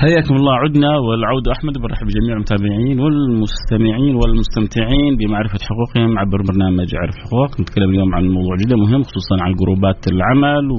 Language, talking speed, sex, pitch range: English, 145 wpm, male, 100-130 Hz